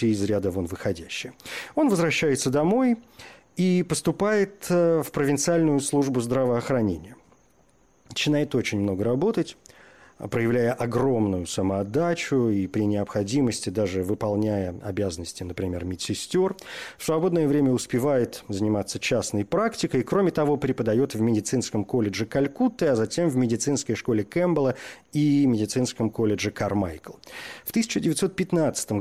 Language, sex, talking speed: Russian, male, 115 wpm